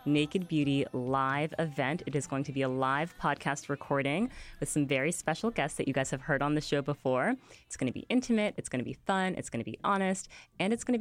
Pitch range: 130-160 Hz